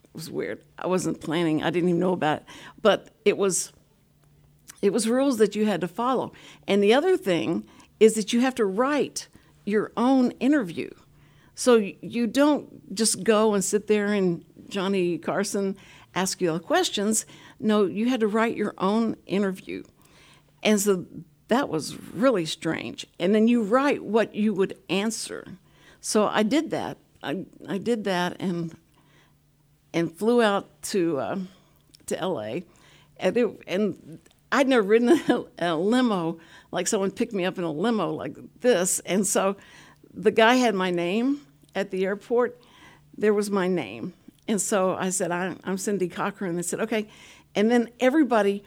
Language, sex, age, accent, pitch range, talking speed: English, female, 60-79, American, 175-225 Hz, 170 wpm